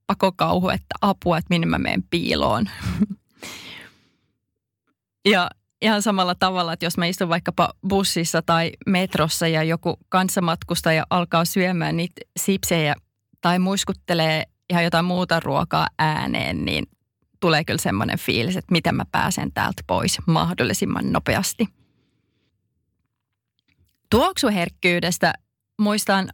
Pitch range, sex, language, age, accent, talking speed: 165-205 Hz, female, Finnish, 20-39, native, 110 wpm